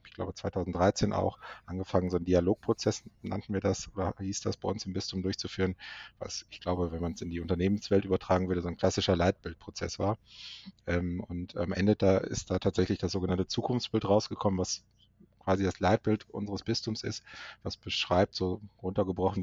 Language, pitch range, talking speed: German, 90-105 Hz, 175 wpm